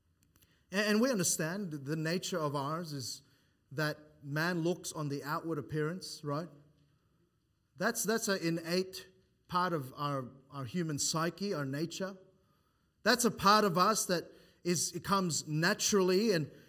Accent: Australian